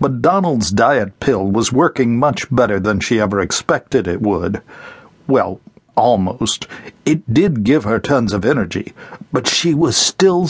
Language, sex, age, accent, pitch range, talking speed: English, male, 60-79, American, 105-145 Hz, 155 wpm